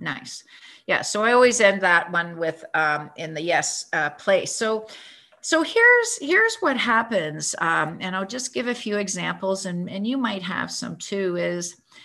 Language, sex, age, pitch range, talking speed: English, female, 50-69, 180-230 Hz, 185 wpm